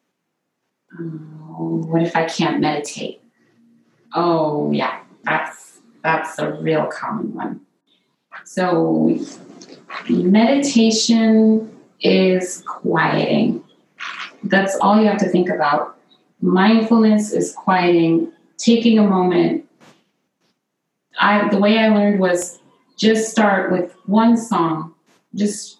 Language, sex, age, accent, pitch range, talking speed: English, female, 30-49, American, 165-220 Hz, 100 wpm